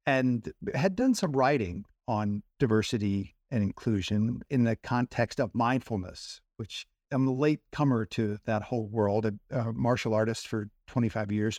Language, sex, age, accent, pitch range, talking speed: English, male, 50-69, American, 105-130 Hz, 155 wpm